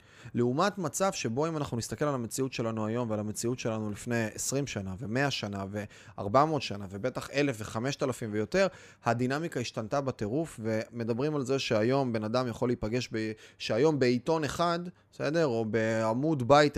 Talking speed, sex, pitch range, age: 155 wpm, male, 110-145 Hz, 20-39